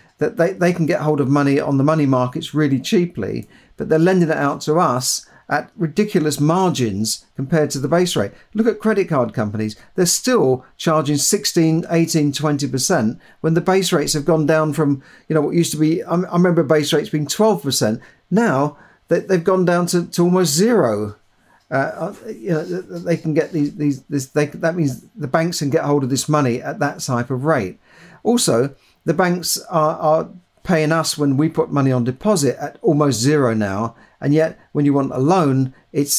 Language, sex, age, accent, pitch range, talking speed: English, male, 50-69, British, 140-170 Hz, 195 wpm